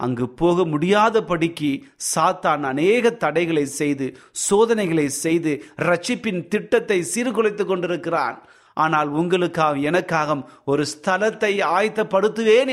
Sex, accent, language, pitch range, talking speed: male, native, Tamil, 165-225 Hz, 95 wpm